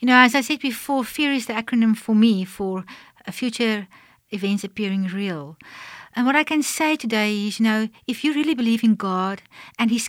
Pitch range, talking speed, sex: 205-255 Hz, 200 wpm, female